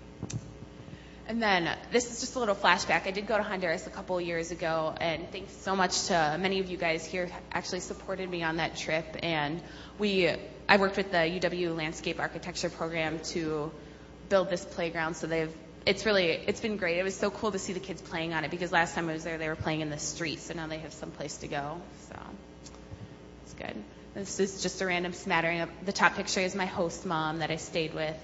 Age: 20-39